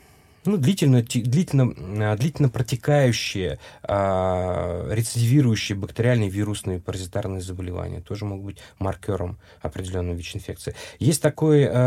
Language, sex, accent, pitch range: Russian, male, native, 95-125 Hz